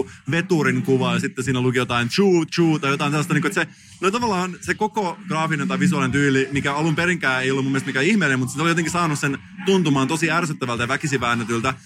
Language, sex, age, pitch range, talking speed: Finnish, male, 30-49, 135-180 Hz, 220 wpm